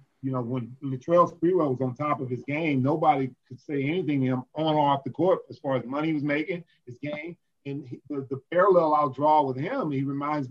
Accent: American